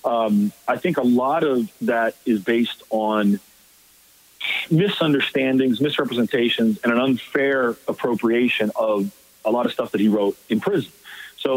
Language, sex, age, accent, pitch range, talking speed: English, male, 40-59, American, 115-170 Hz, 140 wpm